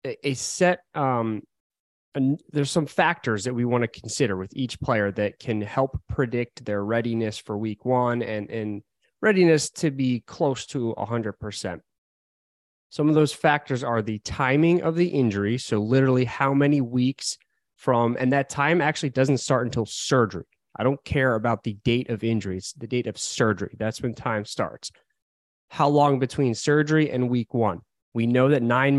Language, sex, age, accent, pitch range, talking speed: English, male, 20-39, American, 110-140 Hz, 175 wpm